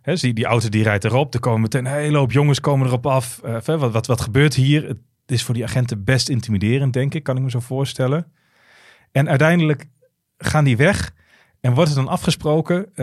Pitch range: 120-155 Hz